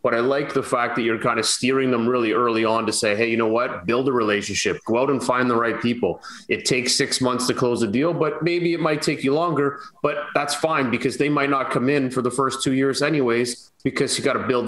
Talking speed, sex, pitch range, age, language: 265 wpm, male, 120-140 Hz, 30-49, English